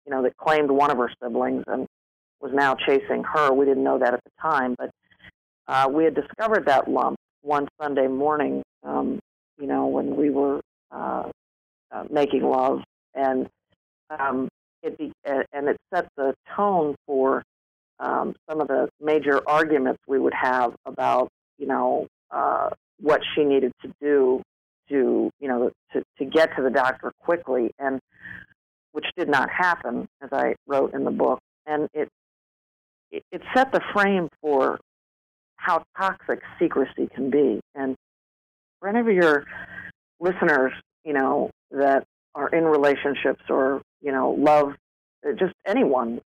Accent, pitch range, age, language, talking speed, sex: American, 130-160 Hz, 50-69, English, 150 wpm, female